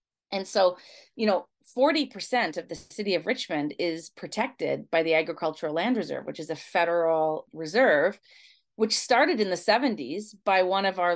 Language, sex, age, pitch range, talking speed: English, female, 30-49, 165-235 Hz, 170 wpm